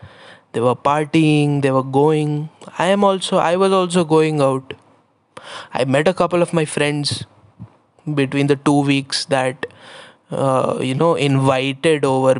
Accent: native